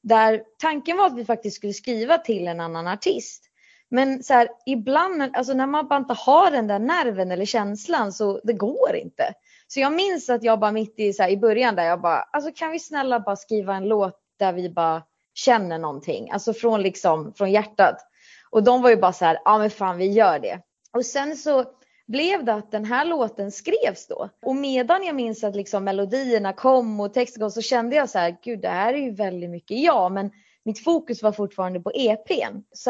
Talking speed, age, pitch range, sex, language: 220 wpm, 20-39, 205-270 Hz, female, Swedish